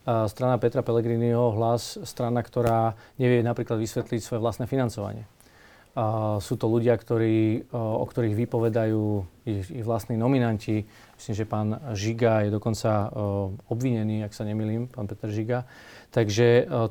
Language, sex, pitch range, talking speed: Slovak, male, 110-120 Hz, 150 wpm